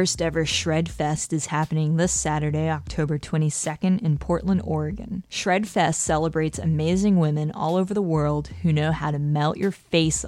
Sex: female